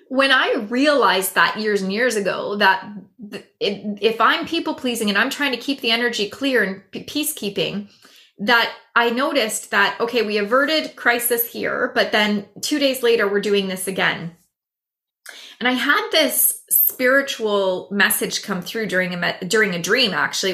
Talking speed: 155 wpm